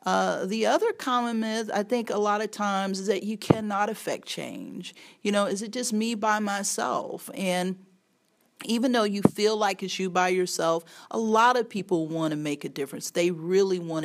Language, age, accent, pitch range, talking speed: English, 40-59, American, 160-215 Hz, 200 wpm